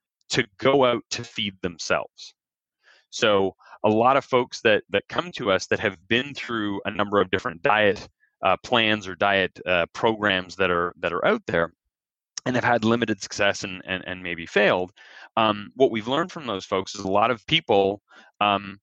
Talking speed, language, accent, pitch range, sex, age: 190 wpm, English, American, 95-115 Hz, male, 30-49